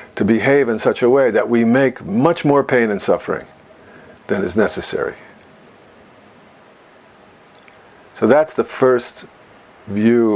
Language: English